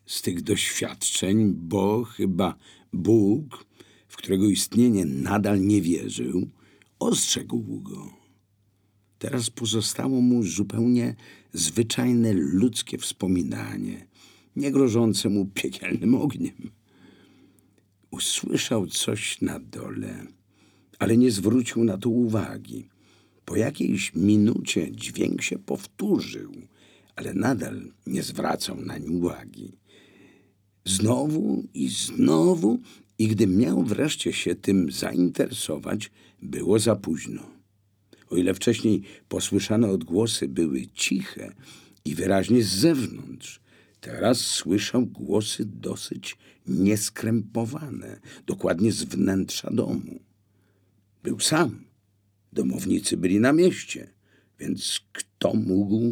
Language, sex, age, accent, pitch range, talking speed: Polish, male, 50-69, native, 100-115 Hz, 95 wpm